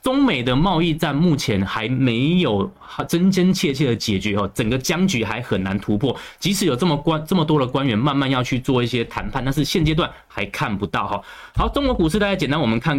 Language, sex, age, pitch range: Chinese, male, 20-39, 115-160 Hz